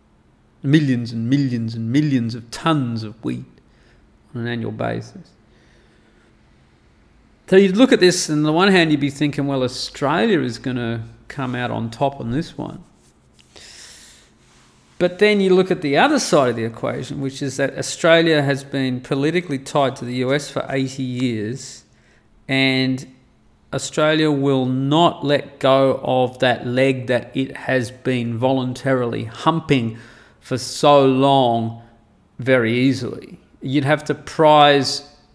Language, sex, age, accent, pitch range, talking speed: English, male, 40-59, Australian, 115-145 Hz, 150 wpm